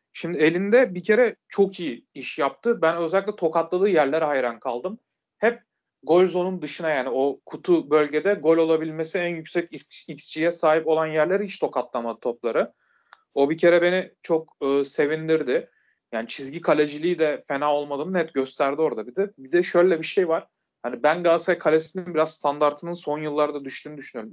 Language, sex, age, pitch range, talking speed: Turkish, male, 40-59, 150-185 Hz, 170 wpm